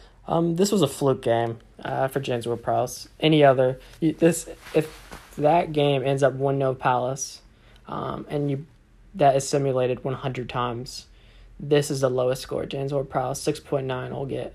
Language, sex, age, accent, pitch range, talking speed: English, male, 20-39, American, 130-145 Hz, 180 wpm